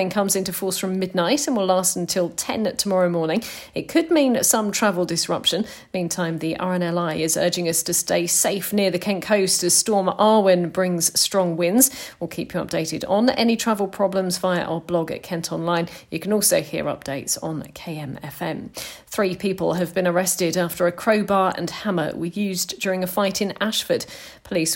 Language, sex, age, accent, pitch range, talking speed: English, female, 40-59, British, 175-215 Hz, 185 wpm